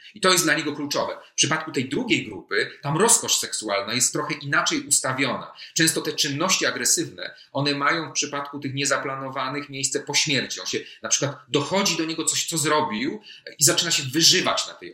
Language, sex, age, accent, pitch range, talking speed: Polish, male, 30-49, native, 135-165 Hz, 190 wpm